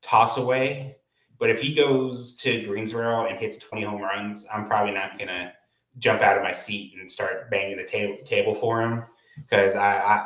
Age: 20-39